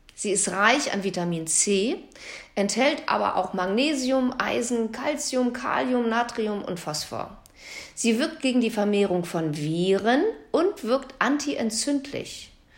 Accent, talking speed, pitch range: German, 120 wpm, 205-285 Hz